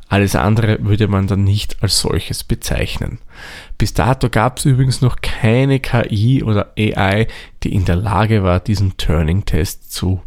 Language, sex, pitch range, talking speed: German, male, 105-130 Hz, 160 wpm